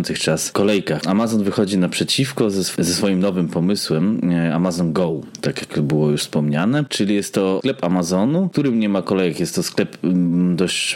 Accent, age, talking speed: native, 20-39, 160 wpm